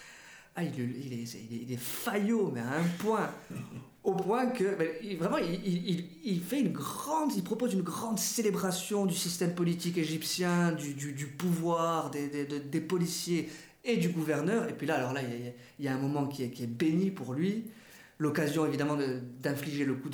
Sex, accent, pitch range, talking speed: male, French, 135-175 Hz, 170 wpm